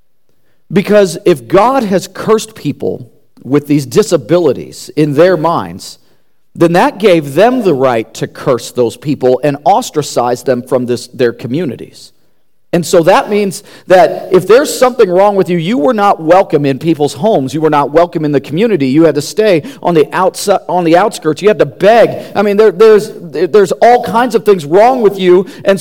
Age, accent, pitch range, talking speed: 40-59, American, 150-230 Hz, 185 wpm